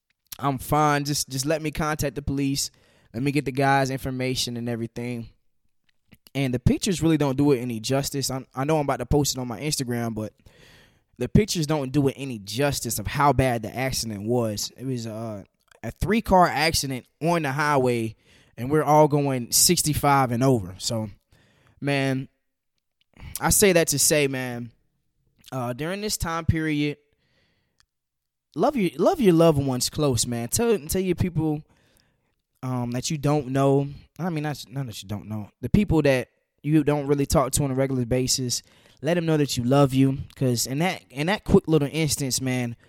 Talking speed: 185 wpm